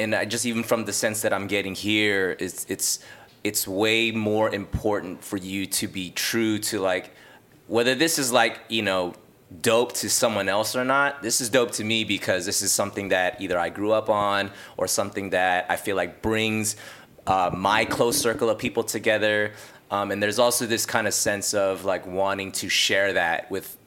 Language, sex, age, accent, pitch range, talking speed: English, male, 20-39, American, 95-110 Hz, 200 wpm